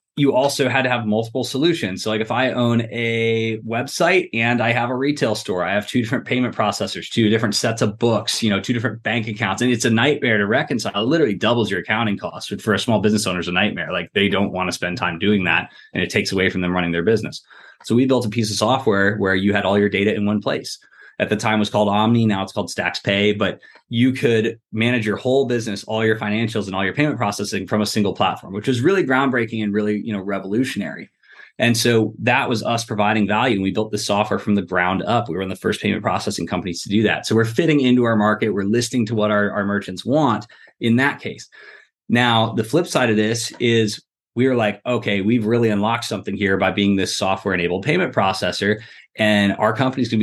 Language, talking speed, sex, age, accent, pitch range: English, 240 wpm, male, 20-39, American, 105-120 Hz